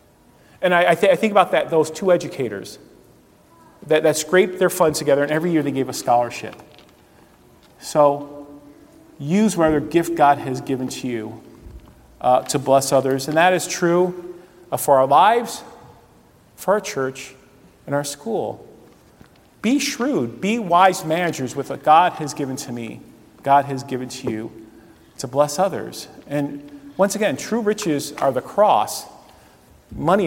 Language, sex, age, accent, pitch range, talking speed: English, male, 40-59, American, 125-160 Hz, 160 wpm